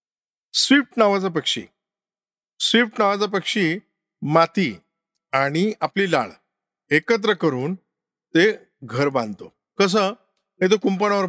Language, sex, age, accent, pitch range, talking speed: Marathi, male, 50-69, native, 150-195 Hz, 100 wpm